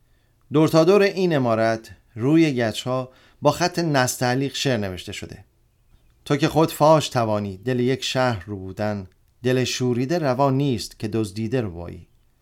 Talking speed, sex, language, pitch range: 140 wpm, male, Persian, 110-135 Hz